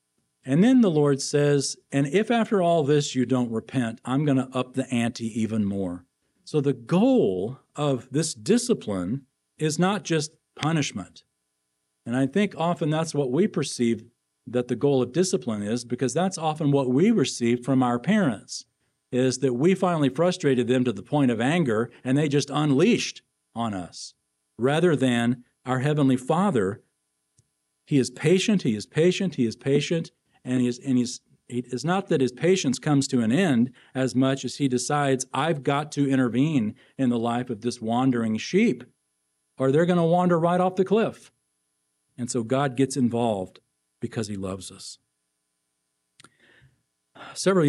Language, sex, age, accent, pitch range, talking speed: English, male, 50-69, American, 115-150 Hz, 165 wpm